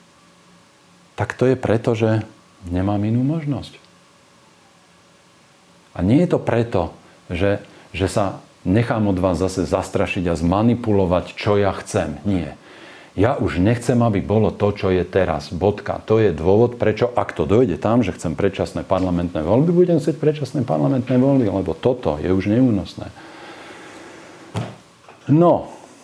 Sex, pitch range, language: male, 80-105 Hz, Slovak